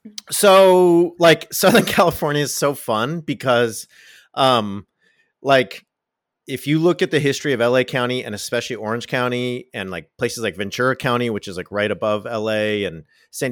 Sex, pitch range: male, 105-140 Hz